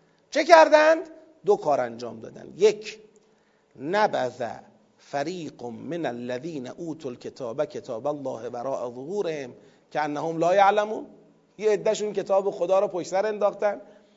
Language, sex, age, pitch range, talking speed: Persian, male, 40-59, 165-245 Hz, 120 wpm